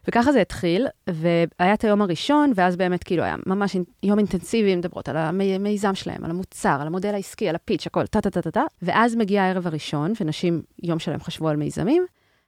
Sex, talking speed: female, 185 wpm